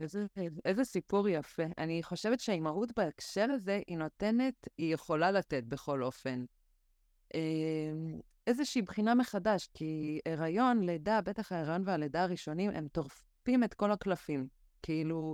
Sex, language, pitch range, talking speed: female, Hebrew, 150-200 Hz, 130 wpm